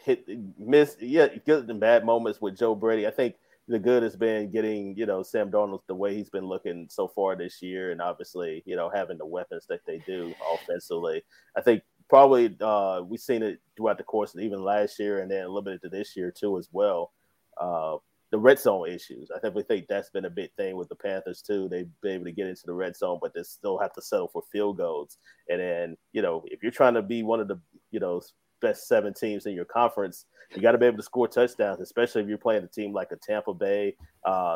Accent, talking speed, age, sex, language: American, 245 wpm, 30-49, male, English